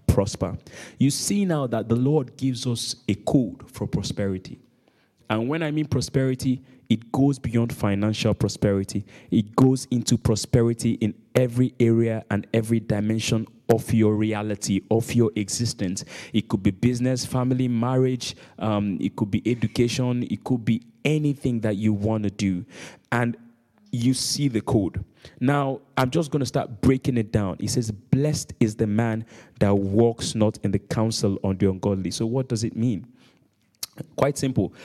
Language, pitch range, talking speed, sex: English, 110-135 Hz, 165 wpm, male